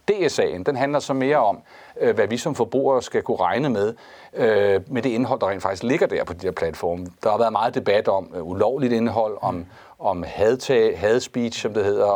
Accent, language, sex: native, Danish, male